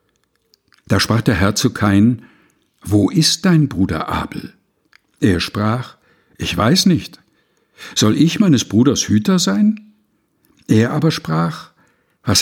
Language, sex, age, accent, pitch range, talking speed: German, male, 60-79, German, 100-145 Hz, 125 wpm